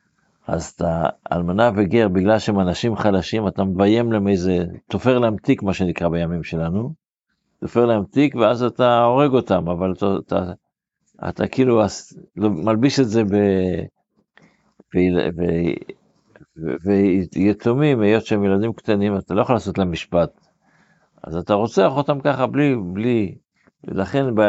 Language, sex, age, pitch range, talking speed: Hebrew, male, 50-69, 95-120 Hz, 125 wpm